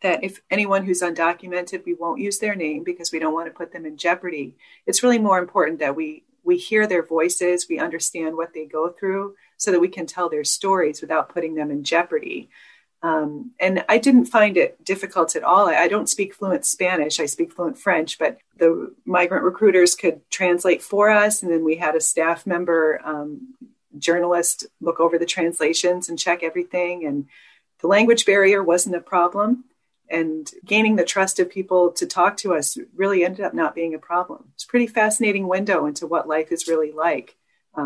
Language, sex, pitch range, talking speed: English, female, 165-200 Hz, 195 wpm